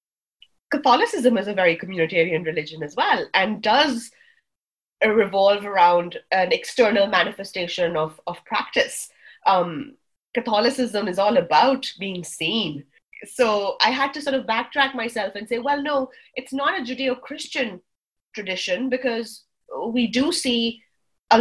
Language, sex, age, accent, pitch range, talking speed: English, female, 30-49, Indian, 195-260 Hz, 130 wpm